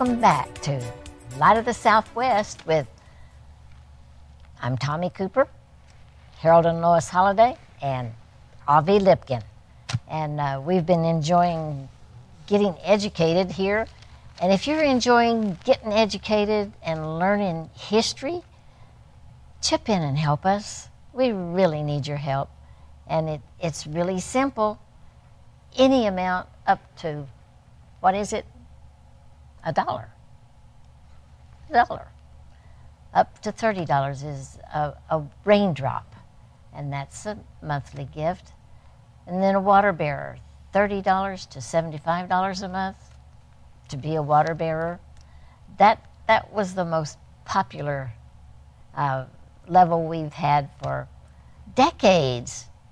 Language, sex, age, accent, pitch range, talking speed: English, female, 60-79, American, 125-195 Hz, 115 wpm